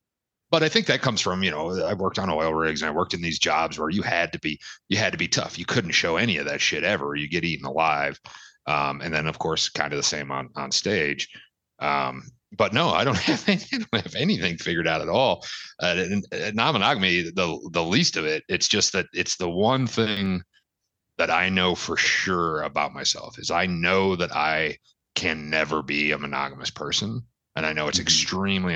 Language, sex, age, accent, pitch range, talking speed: English, male, 30-49, American, 75-100 Hz, 220 wpm